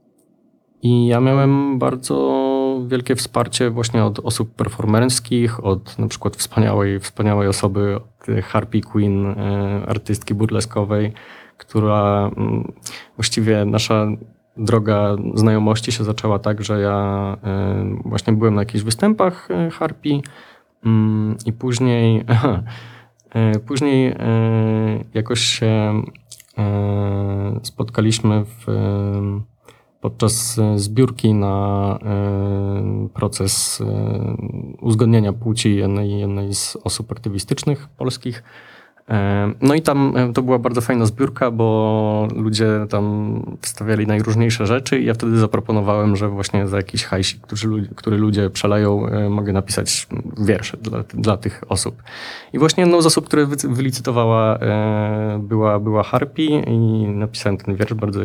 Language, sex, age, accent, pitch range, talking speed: Polish, male, 20-39, native, 105-120 Hz, 115 wpm